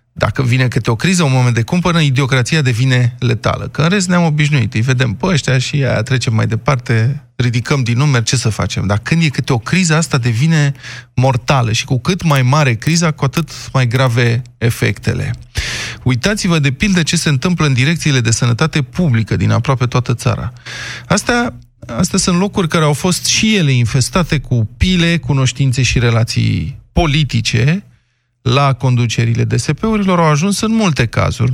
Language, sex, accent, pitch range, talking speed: Romanian, male, native, 120-160 Hz, 175 wpm